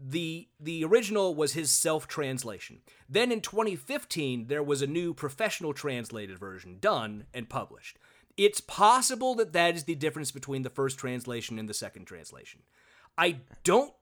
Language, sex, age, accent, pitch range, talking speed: English, male, 30-49, American, 130-190 Hz, 155 wpm